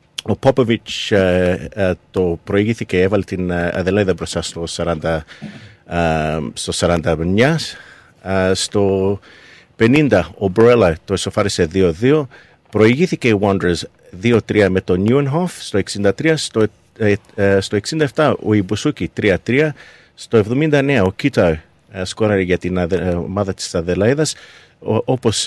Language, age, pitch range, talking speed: Greek, 50-69, 95-120 Hz, 125 wpm